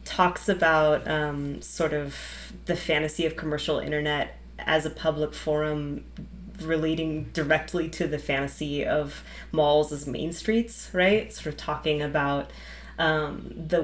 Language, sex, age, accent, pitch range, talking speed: English, female, 20-39, American, 145-165 Hz, 135 wpm